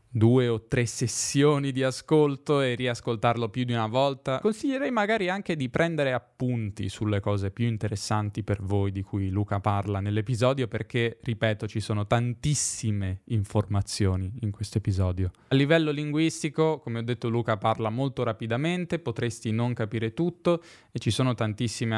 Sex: male